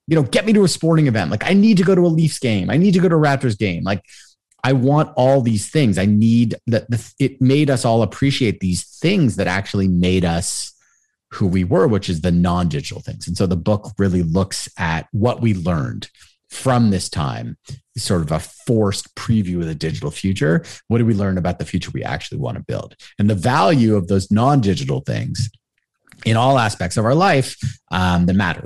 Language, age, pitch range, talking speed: English, 30-49, 105-155 Hz, 220 wpm